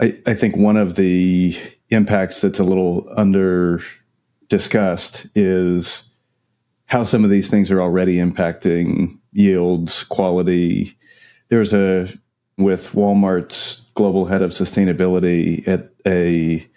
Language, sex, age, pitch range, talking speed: English, male, 40-59, 90-95 Hz, 115 wpm